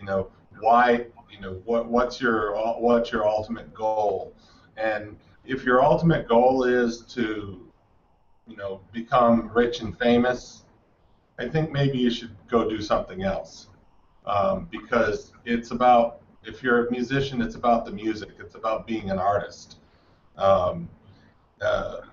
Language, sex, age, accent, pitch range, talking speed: English, male, 40-59, American, 105-125 Hz, 145 wpm